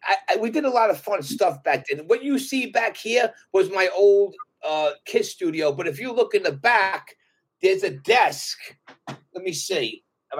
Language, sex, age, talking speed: English, male, 30-49, 210 wpm